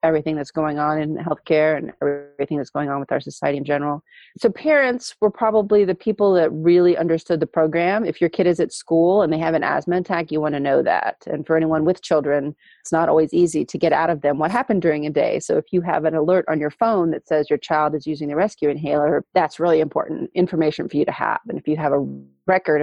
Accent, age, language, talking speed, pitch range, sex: American, 30-49, English, 250 wpm, 150-180 Hz, female